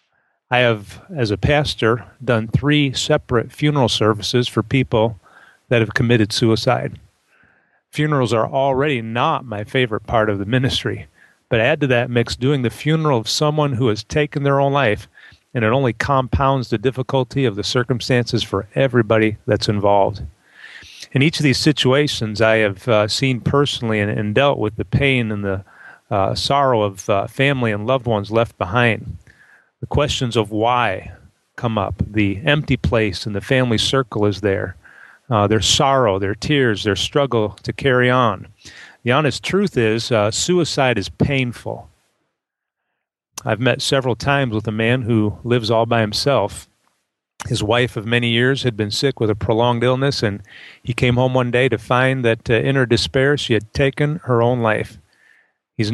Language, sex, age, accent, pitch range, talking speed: English, male, 40-59, American, 110-135 Hz, 170 wpm